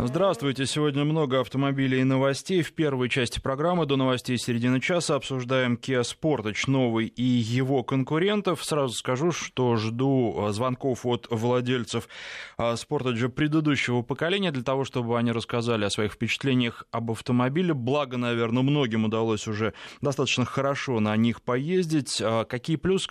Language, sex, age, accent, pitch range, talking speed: Russian, male, 20-39, native, 120-150 Hz, 140 wpm